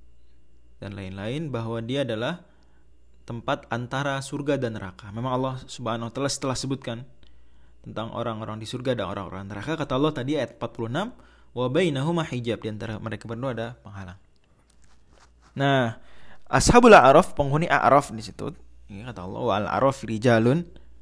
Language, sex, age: Indonesian, male, 20-39